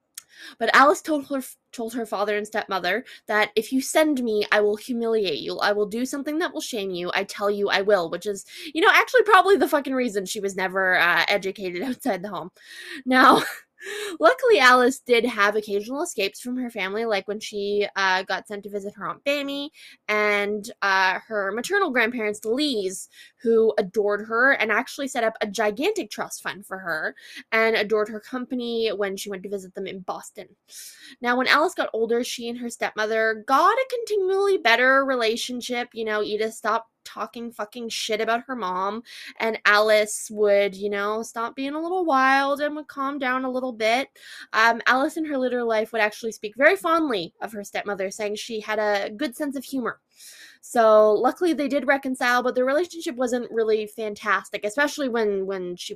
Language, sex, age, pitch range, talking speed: English, female, 20-39, 210-275 Hz, 190 wpm